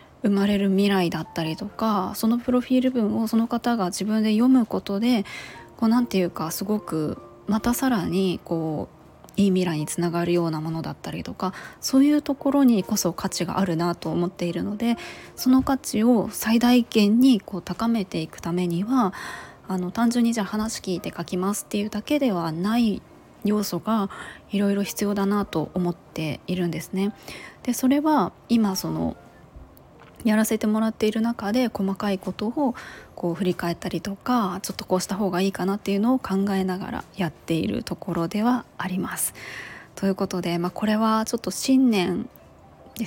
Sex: female